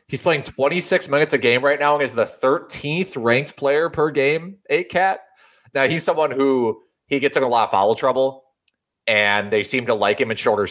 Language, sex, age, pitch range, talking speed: English, male, 30-49, 105-145 Hz, 205 wpm